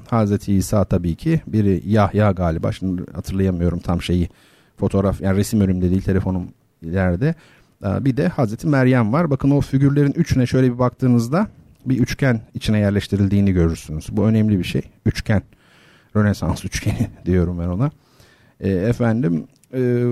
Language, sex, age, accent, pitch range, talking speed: Turkish, male, 50-69, native, 95-130 Hz, 145 wpm